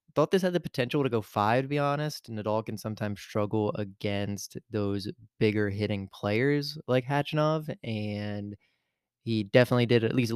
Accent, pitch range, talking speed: American, 105-125 Hz, 170 wpm